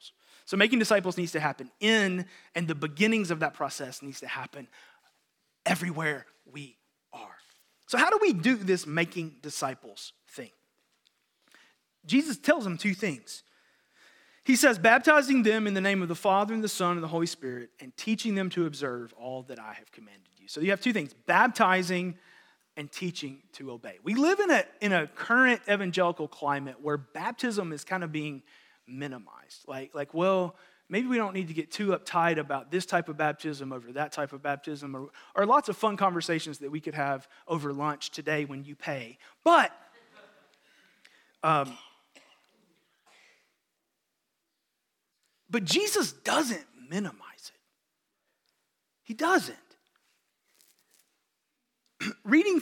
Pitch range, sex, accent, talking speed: 150-220 Hz, male, American, 150 wpm